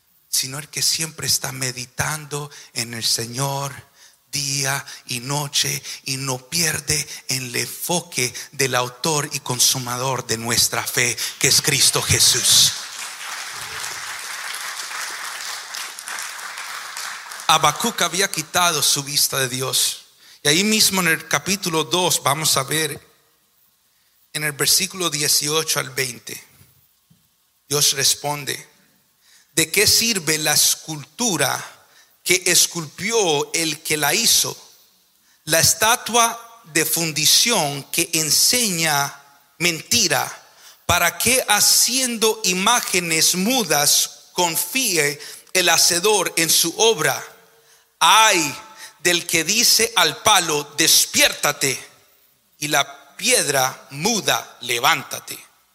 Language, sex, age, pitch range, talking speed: English, male, 40-59, 140-180 Hz, 100 wpm